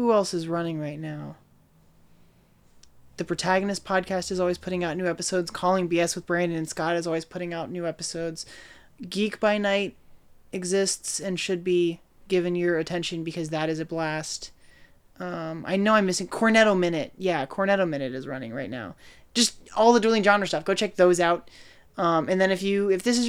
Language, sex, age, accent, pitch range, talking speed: English, male, 20-39, American, 165-205 Hz, 190 wpm